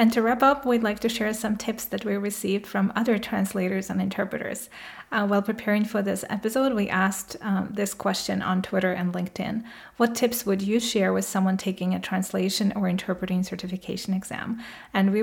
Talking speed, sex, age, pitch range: 195 wpm, female, 30-49, 185-220 Hz